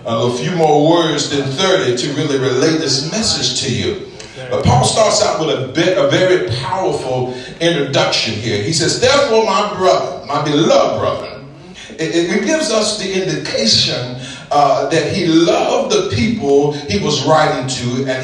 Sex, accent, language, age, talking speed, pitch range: male, American, English, 50-69, 160 wpm, 130-170 Hz